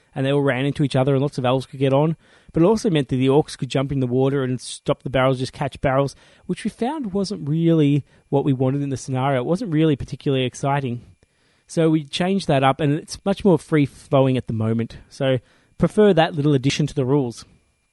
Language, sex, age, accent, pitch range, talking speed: English, male, 20-39, Australian, 130-165 Hz, 235 wpm